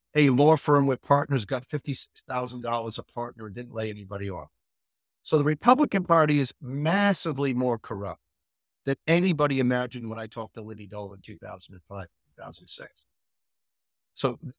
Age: 50-69